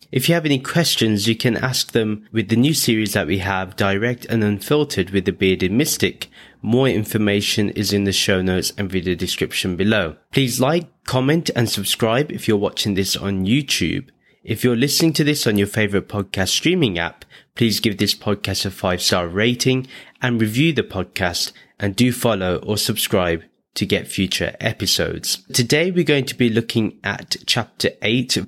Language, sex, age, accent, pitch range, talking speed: English, male, 20-39, British, 95-125 Hz, 180 wpm